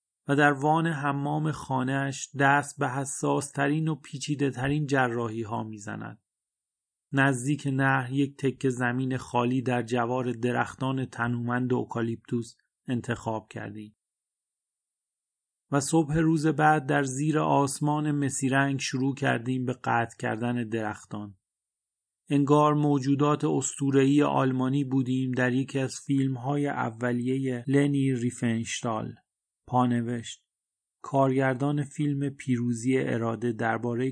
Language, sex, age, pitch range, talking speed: Persian, male, 30-49, 120-140 Hz, 105 wpm